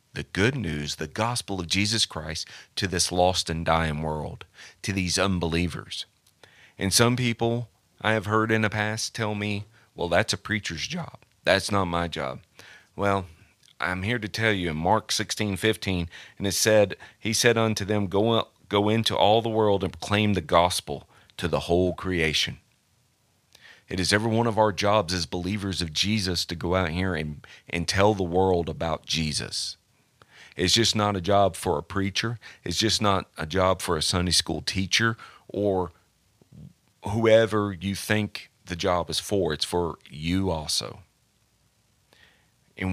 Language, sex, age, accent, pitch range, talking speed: English, male, 40-59, American, 85-105 Hz, 170 wpm